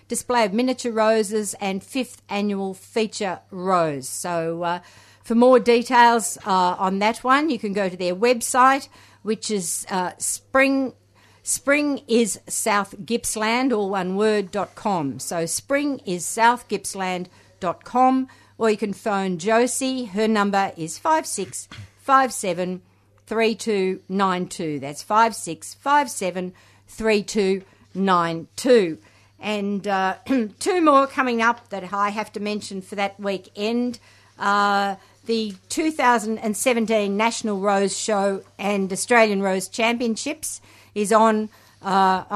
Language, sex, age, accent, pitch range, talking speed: English, female, 50-69, Australian, 190-235 Hz, 110 wpm